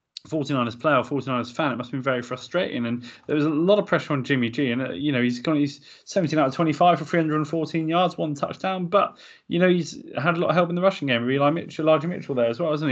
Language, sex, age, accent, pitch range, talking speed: English, male, 20-39, British, 120-155 Hz, 265 wpm